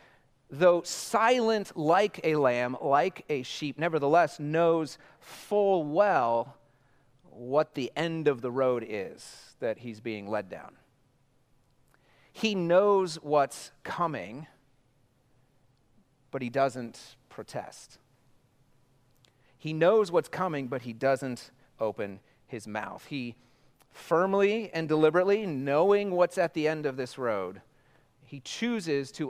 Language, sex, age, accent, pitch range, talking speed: English, male, 40-59, American, 125-155 Hz, 115 wpm